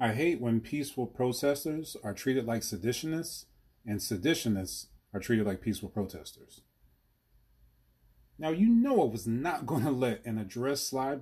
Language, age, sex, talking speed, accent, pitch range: English, 30-49, male, 150 wpm, American, 110-145 Hz